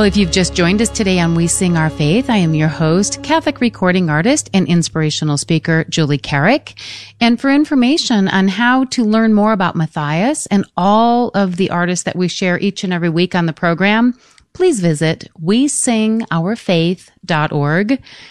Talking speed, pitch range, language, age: 170 wpm, 165-220 Hz, English, 40-59